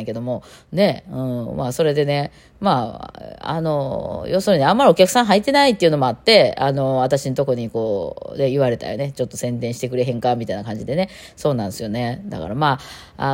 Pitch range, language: 125-195 Hz, Japanese